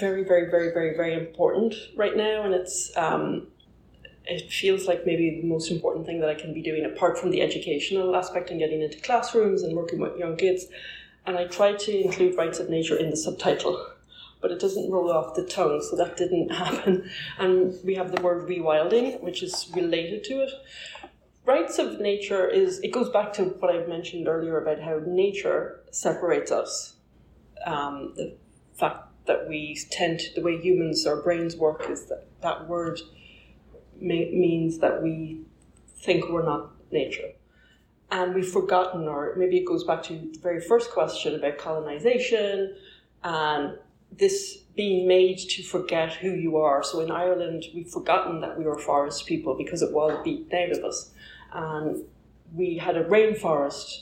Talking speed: 175 wpm